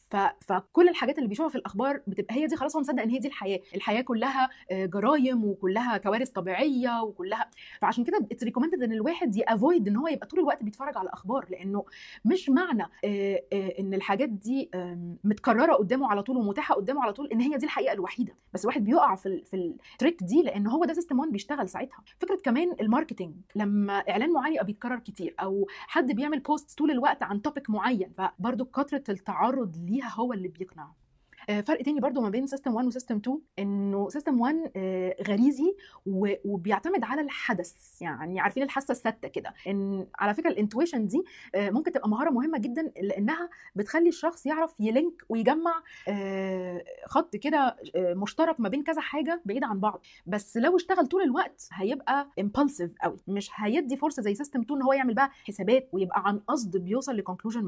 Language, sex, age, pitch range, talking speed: Arabic, female, 30-49, 200-290 Hz, 170 wpm